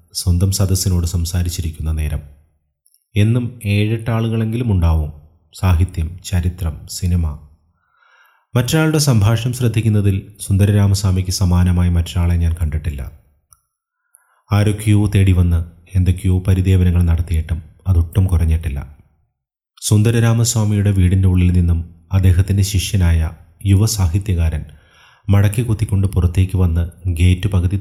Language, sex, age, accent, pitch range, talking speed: Malayalam, male, 30-49, native, 85-100 Hz, 85 wpm